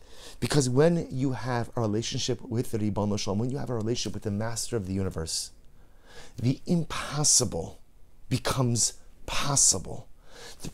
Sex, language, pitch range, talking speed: male, English, 120-185 Hz, 145 wpm